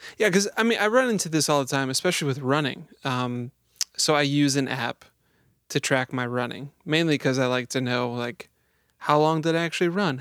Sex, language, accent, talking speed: male, English, American, 220 wpm